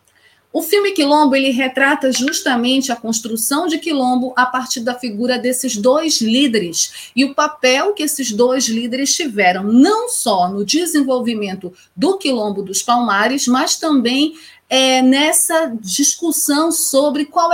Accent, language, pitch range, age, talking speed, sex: Brazilian, Portuguese, 210-275 Hz, 40-59, 130 wpm, female